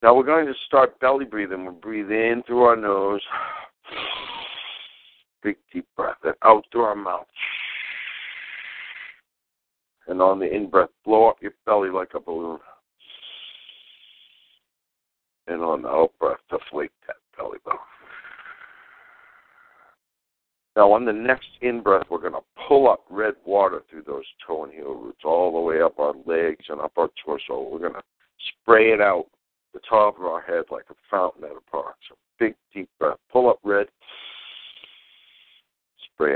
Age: 60-79